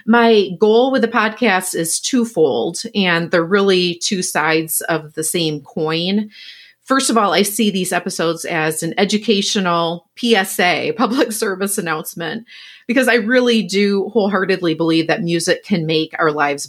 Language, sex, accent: English, female, American